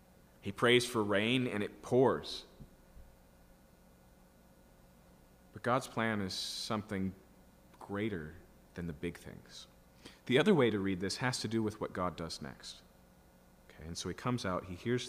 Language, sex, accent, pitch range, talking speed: English, male, American, 85-115 Hz, 155 wpm